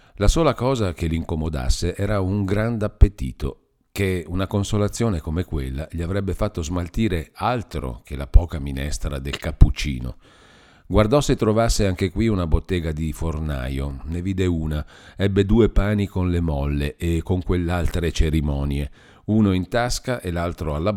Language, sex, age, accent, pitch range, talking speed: Italian, male, 50-69, native, 80-105 Hz, 150 wpm